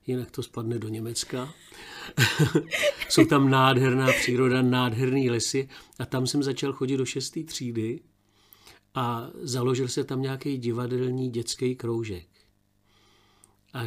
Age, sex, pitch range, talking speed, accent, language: 50-69, male, 110-130 Hz, 120 wpm, native, Czech